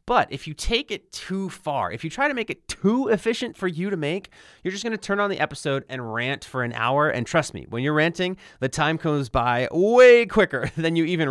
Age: 30-49